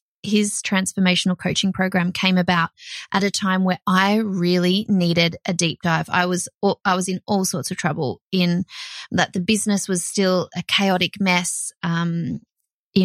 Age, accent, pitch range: 20-39, Australian, 175-195 Hz